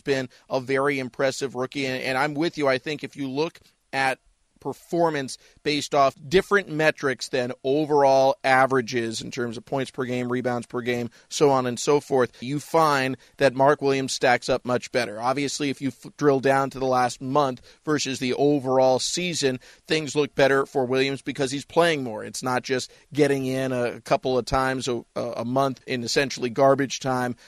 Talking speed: 185 wpm